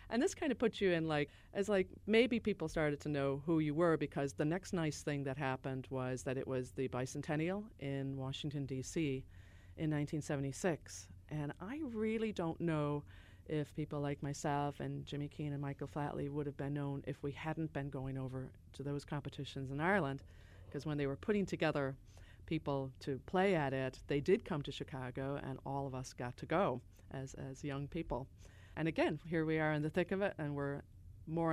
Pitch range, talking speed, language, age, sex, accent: 130-160 Hz, 200 wpm, English, 40-59, female, American